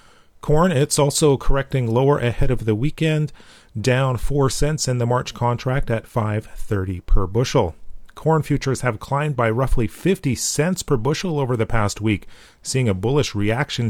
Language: English